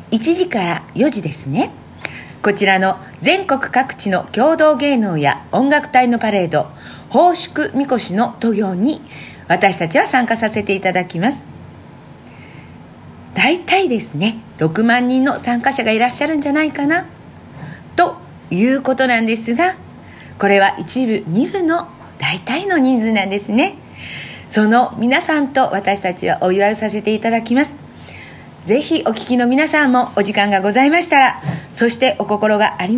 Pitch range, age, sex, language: 195-275 Hz, 40-59, female, Japanese